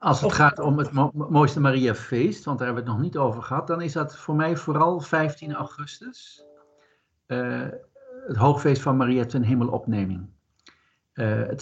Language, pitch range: Dutch, 105-140 Hz